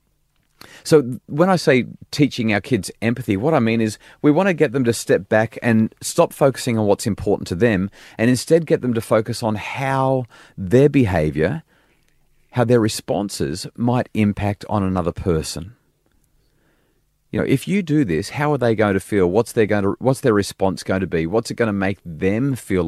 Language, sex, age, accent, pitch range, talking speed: English, male, 30-49, Australian, 90-125 Hz, 190 wpm